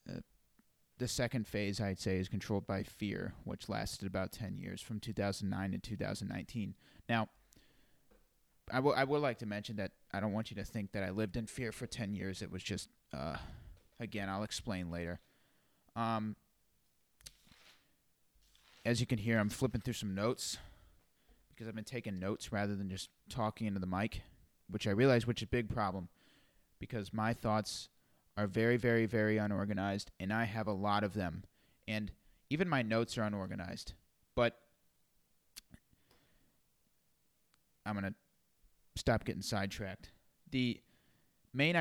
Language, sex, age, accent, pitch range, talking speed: English, male, 30-49, American, 100-115 Hz, 155 wpm